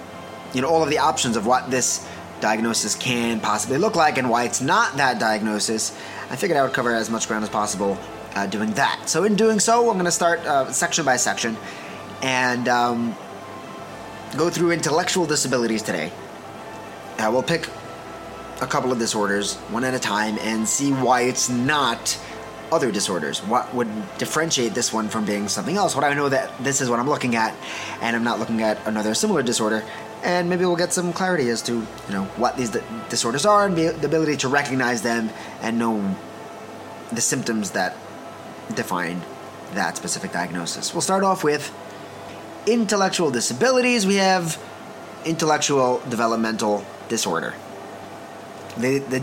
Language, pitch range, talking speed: English, 110-160 Hz, 170 wpm